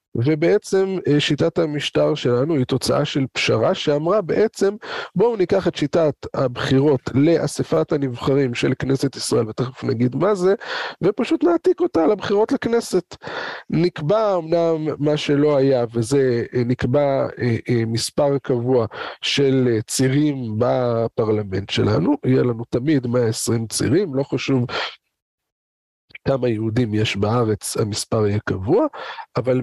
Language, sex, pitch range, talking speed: Hebrew, male, 120-160 Hz, 115 wpm